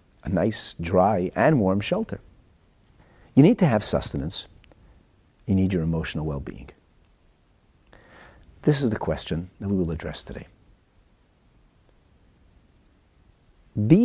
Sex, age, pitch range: male, 50-69, 85-125 Hz